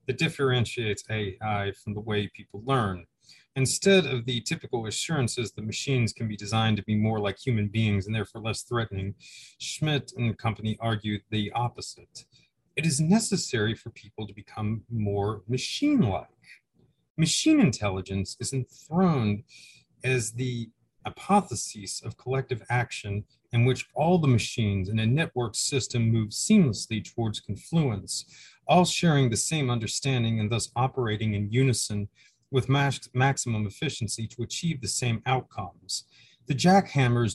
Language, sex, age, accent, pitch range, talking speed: English, male, 30-49, American, 105-135 Hz, 140 wpm